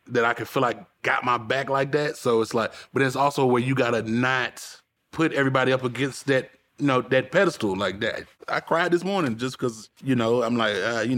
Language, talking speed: English, 230 wpm